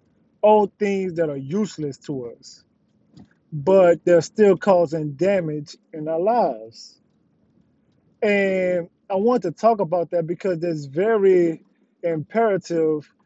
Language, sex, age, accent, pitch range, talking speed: English, male, 20-39, American, 160-210 Hz, 120 wpm